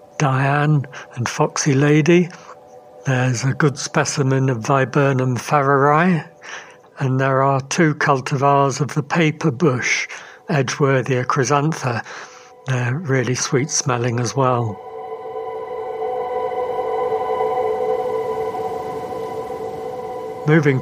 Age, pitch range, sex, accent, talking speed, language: 60-79, 130-150 Hz, male, British, 85 wpm, English